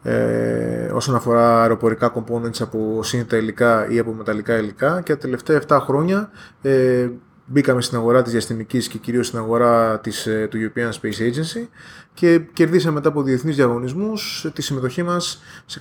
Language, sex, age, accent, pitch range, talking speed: Greek, male, 20-39, native, 120-150 Hz, 150 wpm